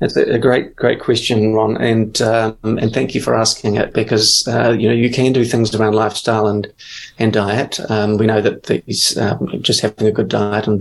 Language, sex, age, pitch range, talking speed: English, male, 30-49, 105-120 Hz, 215 wpm